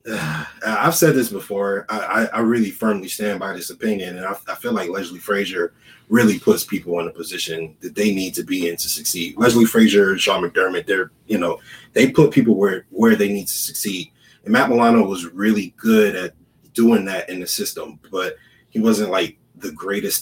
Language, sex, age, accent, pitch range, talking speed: English, male, 20-39, American, 100-135 Hz, 200 wpm